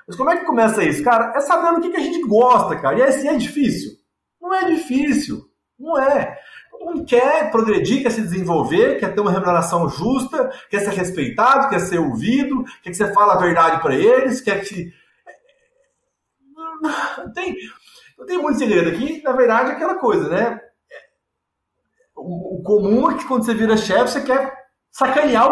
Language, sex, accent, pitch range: Portuguese, male, Brazilian, 195-270 Hz